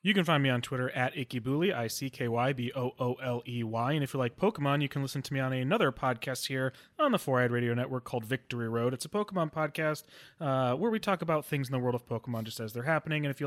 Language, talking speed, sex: English, 235 wpm, male